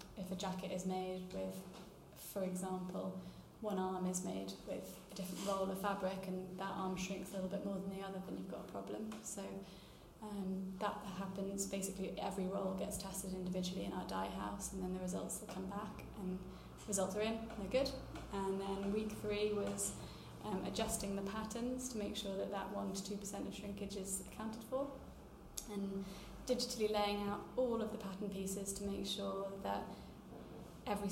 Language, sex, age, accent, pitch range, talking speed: English, female, 20-39, British, 190-205 Hz, 190 wpm